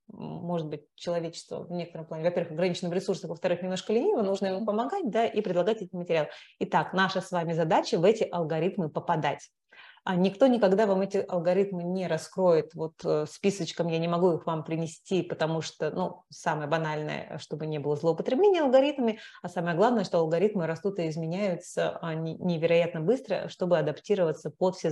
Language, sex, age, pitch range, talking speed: Russian, female, 30-49, 165-195 Hz, 165 wpm